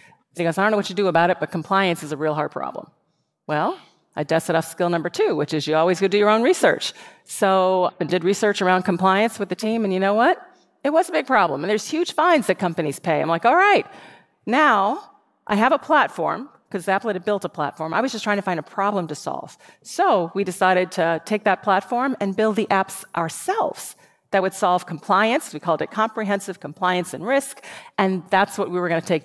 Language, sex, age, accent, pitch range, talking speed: English, female, 40-59, American, 170-215 Hz, 235 wpm